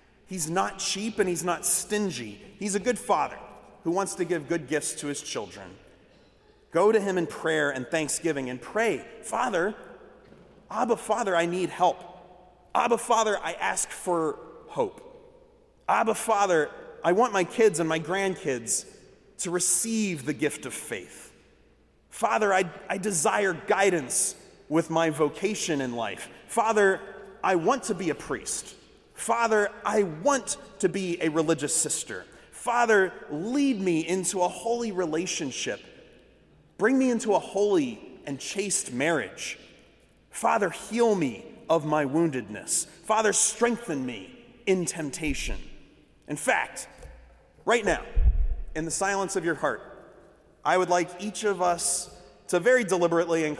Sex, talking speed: male, 140 wpm